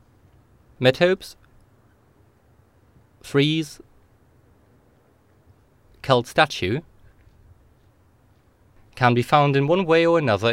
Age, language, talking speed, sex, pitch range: 30-49, English, 70 wpm, male, 105-135 Hz